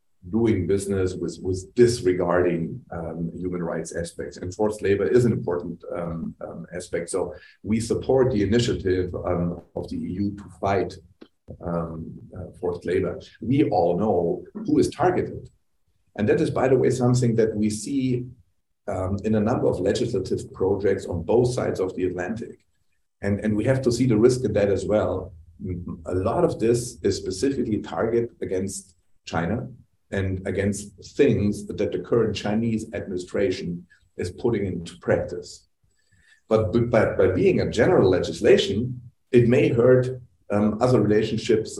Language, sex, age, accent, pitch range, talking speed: English, male, 40-59, German, 90-115 Hz, 155 wpm